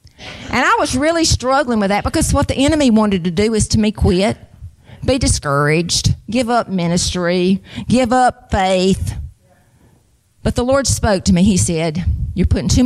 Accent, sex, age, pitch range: American, female, 50-69, 160-235 Hz